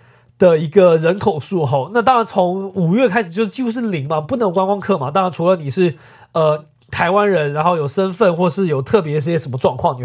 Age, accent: 30-49, native